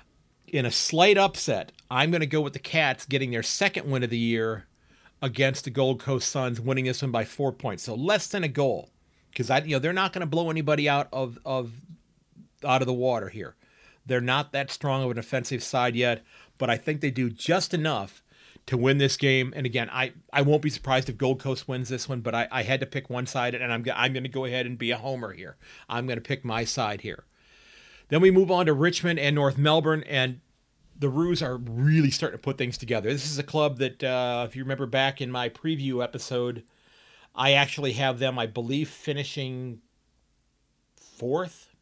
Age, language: 40-59, English